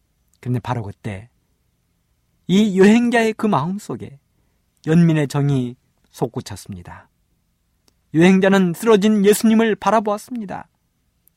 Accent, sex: native, male